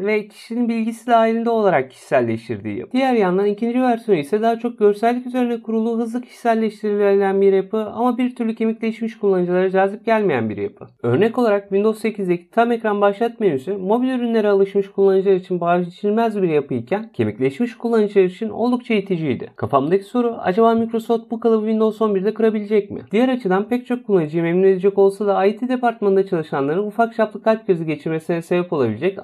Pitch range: 185-225 Hz